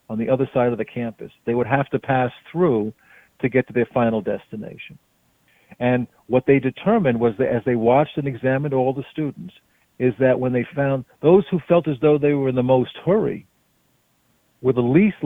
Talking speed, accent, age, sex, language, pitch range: 205 wpm, American, 50-69, male, English, 125-155 Hz